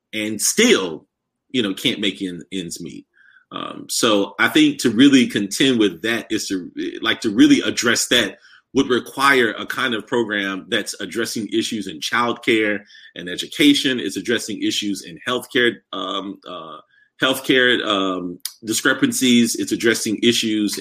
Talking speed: 150 wpm